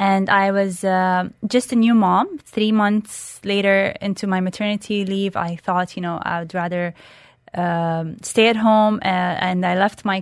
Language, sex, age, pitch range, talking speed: English, female, 20-39, 190-230 Hz, 180 wpm